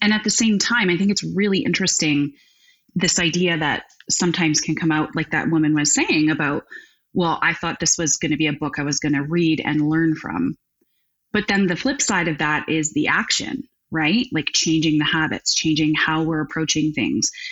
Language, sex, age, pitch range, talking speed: English, female, 30-49, 155-205 Hz, 210 wpm